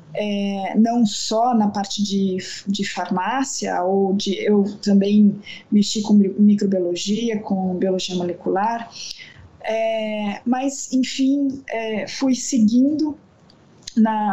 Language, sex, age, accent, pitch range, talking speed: Portuguese, female, 20-39, Brazilian, 210-260 Hz, 105 wpm